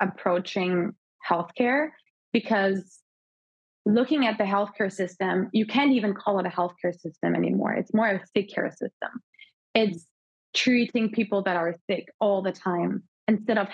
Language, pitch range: English, 180-220 Hz